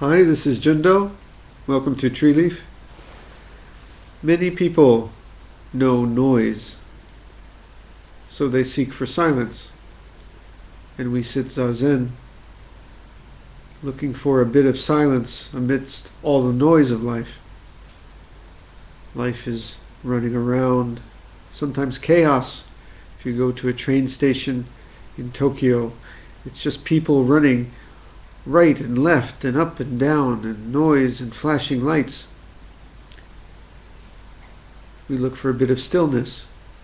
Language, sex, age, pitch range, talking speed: English, male, 50-69, 115-145 Hz, 115 wpm